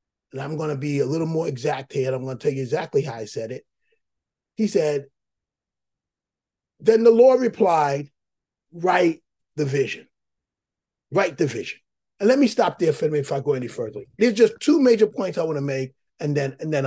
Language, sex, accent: English, male, American